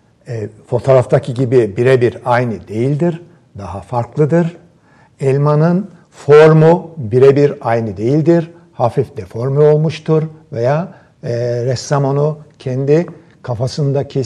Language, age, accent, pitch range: Turkish, 60-79, native, 125-170 Hz